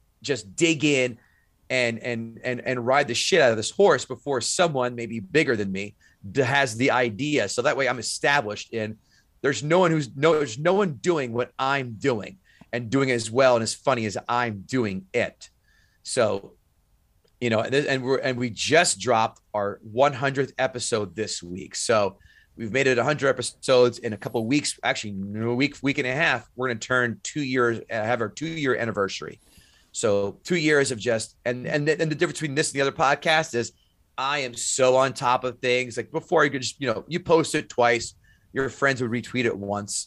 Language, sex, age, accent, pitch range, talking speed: English, male, 30-49, American, 110-140 Hz, 210 wpm